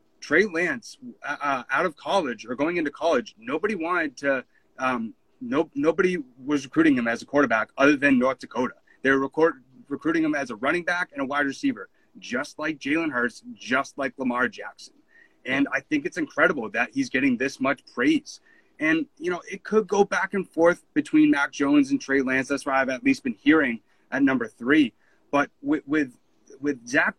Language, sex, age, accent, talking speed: English, male, 30-49, American, 190 wpm